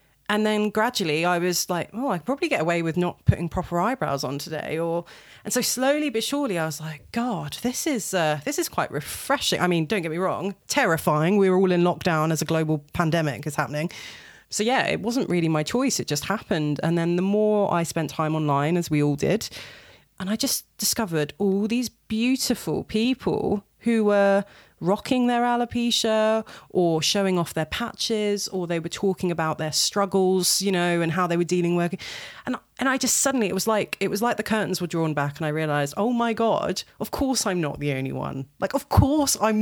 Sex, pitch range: female, 165-225 Hz